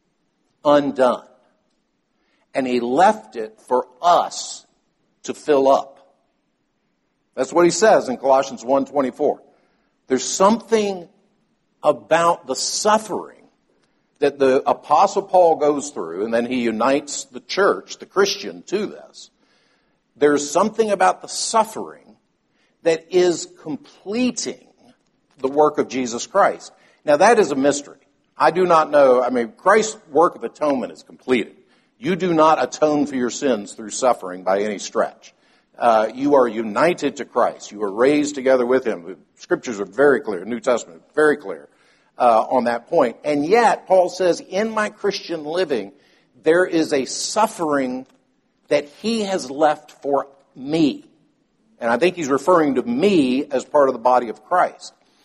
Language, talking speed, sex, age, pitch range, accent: English, 150 wpm, male, 60-79, 130-195 Hz, American